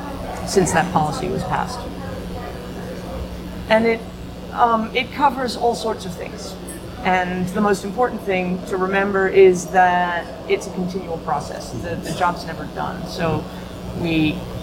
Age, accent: 30-49, American